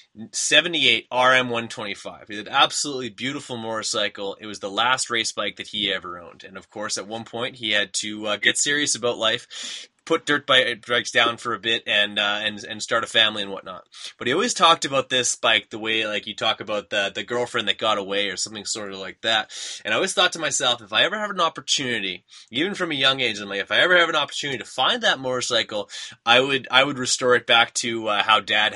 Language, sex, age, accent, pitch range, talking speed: English, male, 20-39, American, 100-125 Hz, 235 wpm